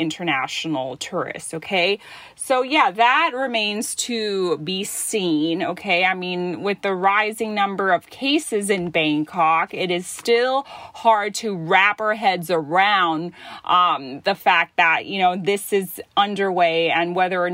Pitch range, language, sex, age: 175-235 Hz, Thai, female, 30-49